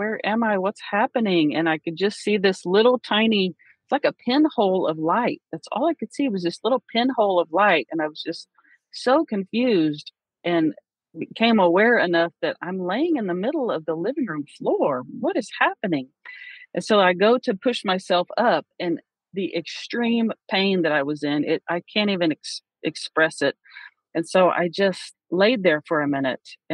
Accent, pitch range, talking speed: American, 170-240 Hz, 190 wpm